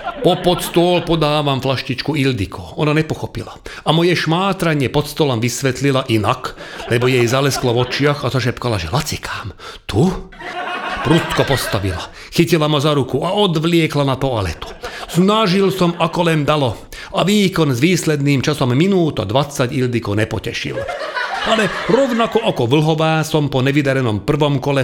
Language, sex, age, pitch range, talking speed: Slovak, male, 40-59, 125-165 Hz, 140 wpm